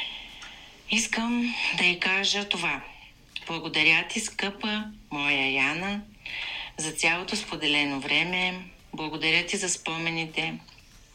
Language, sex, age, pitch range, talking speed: Bulgarian, female, 30-49, 155-190 Hz, 95 wpm